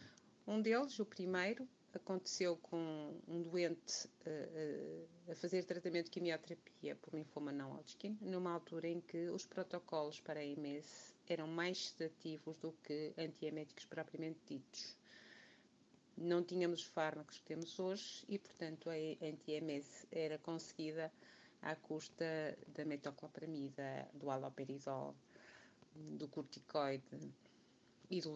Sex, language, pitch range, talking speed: female, Portuguese, 155-180 Hz, 120 wpm